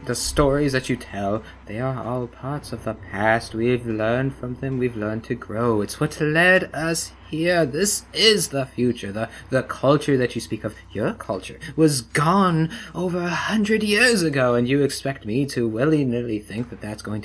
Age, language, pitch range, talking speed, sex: 30-49, English, 110-160 Hz, 190 wpm, male